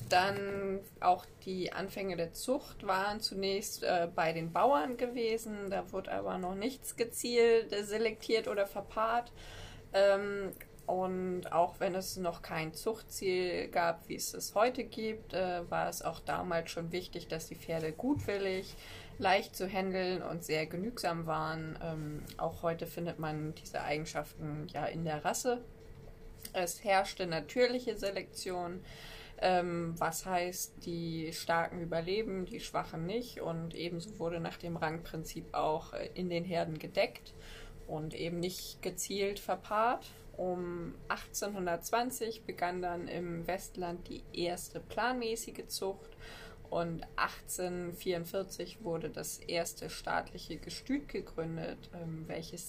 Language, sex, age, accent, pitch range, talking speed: German, female, 20-39, German, 165-200 Hz, 130 wpm